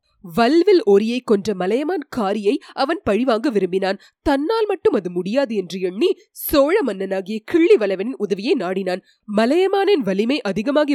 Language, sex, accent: Tamil, female, native